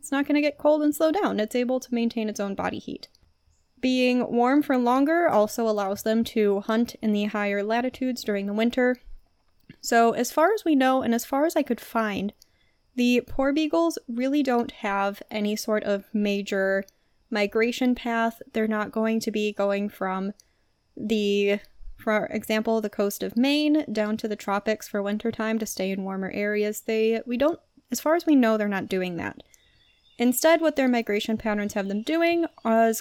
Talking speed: 190 wpm